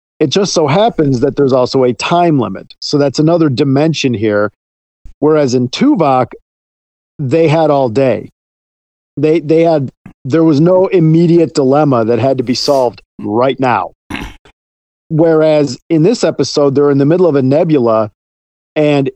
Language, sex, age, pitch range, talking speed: English, male, 50-69, 120-155 Hz, 155 wpm